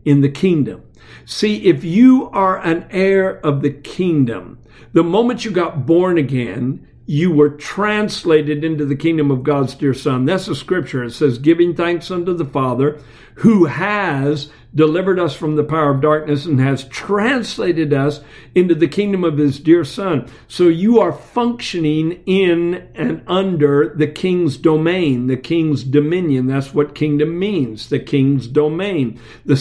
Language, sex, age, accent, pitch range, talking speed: English, male, 60-79, American, 140-175 Hz, 160 wpm